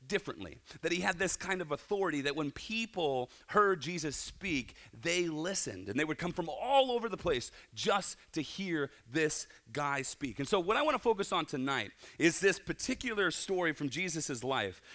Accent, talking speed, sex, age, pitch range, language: American, 190 wpm, male, 30-49, 130-195 Hz, English